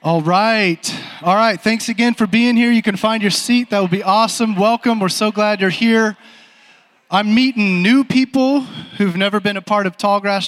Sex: male